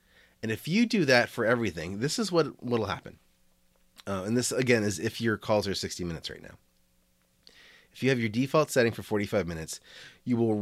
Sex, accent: male, American